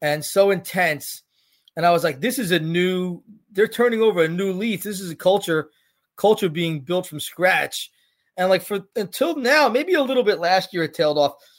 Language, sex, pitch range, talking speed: English, male, 175-215 Hz, 205 wpm